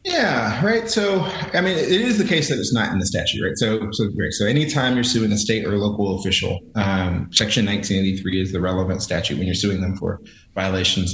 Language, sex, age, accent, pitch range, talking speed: English, male, 30-49, American, 95-115 Hz, 220 wpm